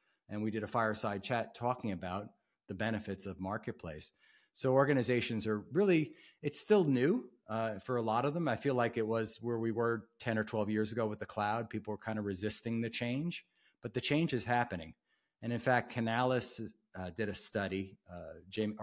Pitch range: 95-115 Hz